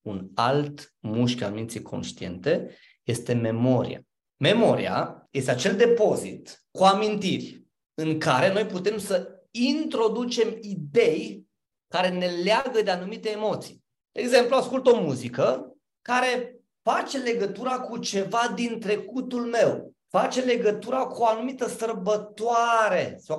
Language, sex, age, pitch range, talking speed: Romanian, male, 30-49, 180-230 Hz, 120 wpm